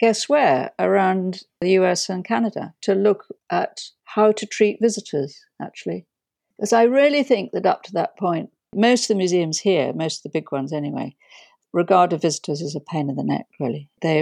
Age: 50-69